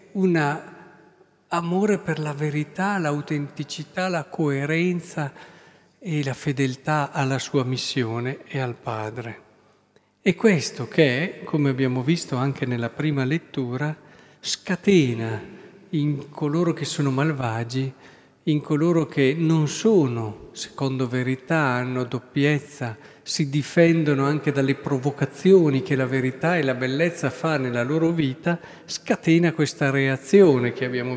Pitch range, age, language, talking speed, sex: 130-160 Hz, 50-69, Italian, 120 wpm, male